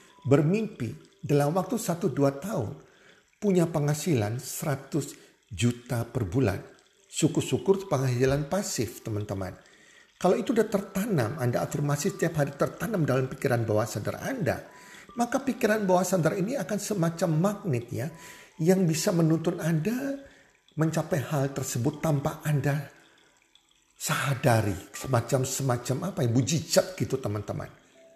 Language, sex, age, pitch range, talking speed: Indonesian, male, 50-69, 135-200 Hz, 115 wpm